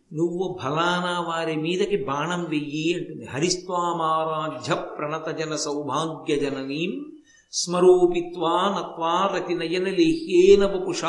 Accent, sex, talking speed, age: native, male, 70 wpm, 50-69